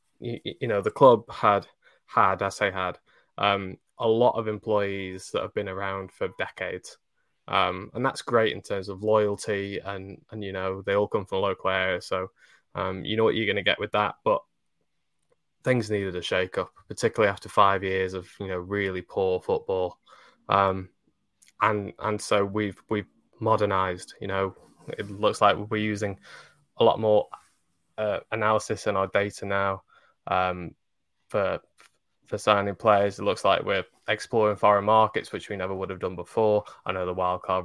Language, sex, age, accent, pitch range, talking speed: English, male, 10-29, British, 95-110 Hz, 180 wpm